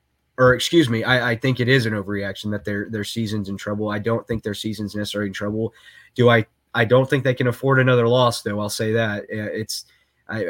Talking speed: 230 wpm